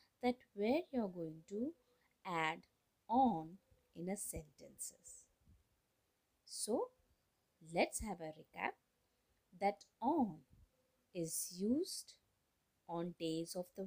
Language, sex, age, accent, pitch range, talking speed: Marathi, female, 20-39, native, 170-250 Hz, 105 wpm